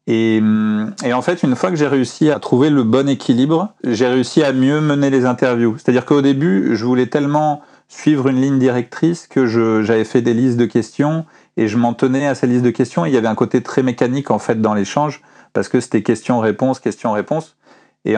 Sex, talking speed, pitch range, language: male, 220 wpm, 110-135 Hz, French